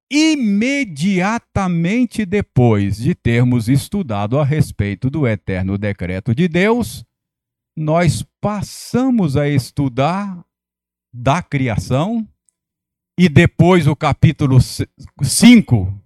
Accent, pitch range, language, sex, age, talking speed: Brazilian, 120-175 Hz, Portuguese, male, 50-69, 85 wpm